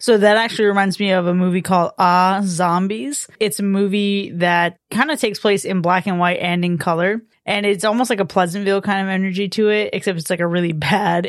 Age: 20-39